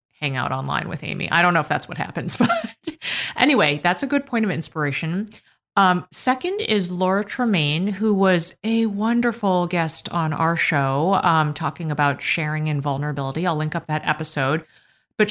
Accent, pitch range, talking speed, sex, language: American, 155-200 Hz, 175 wpm, female, English